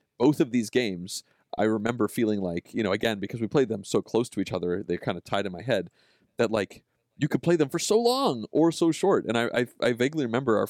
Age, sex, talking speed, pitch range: 30-49, male, 260 wpm, 100-145 Hz